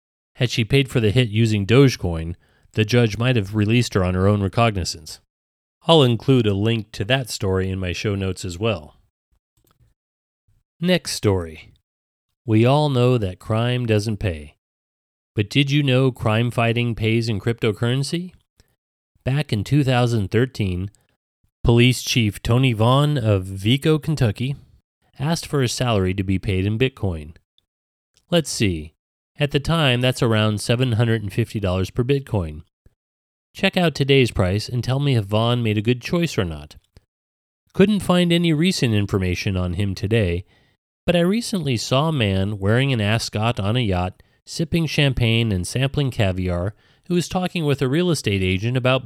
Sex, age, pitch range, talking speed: male, 30-49, 95-130 Hz, 155 wpm